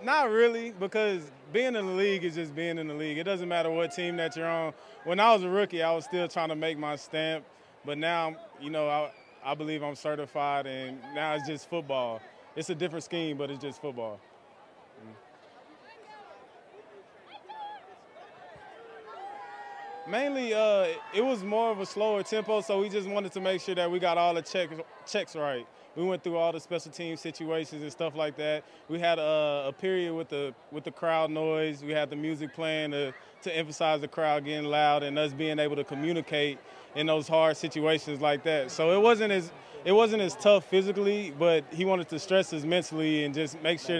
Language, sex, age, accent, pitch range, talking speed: English, male, 20-39, American, 150-185 Hz, 200 wpm